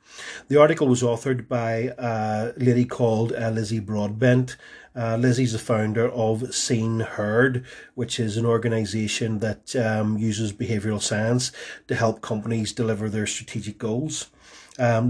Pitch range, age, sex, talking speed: 110-125 Hz, 30-49, male, 140 wpm